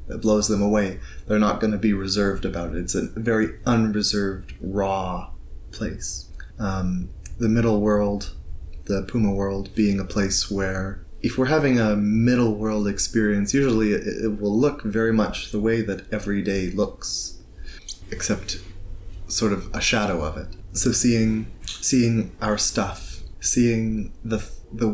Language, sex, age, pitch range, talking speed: English, male, 20-39, 95-110 Hz, 150 wpm